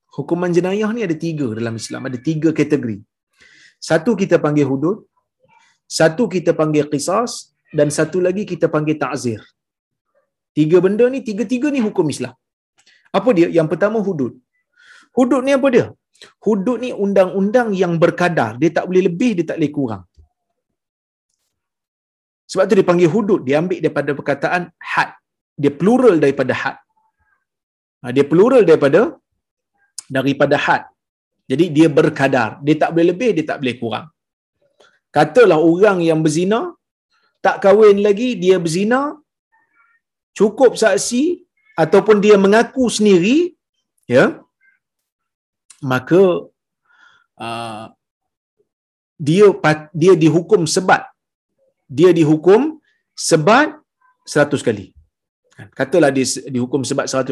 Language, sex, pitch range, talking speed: Malayalam, male, 145-235 Hz, 120 wpm